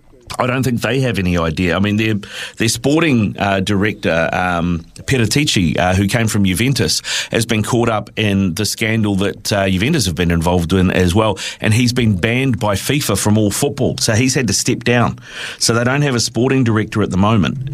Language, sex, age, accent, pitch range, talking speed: English, male, 30-49, Australian, 100-120 Hz, 215 wpm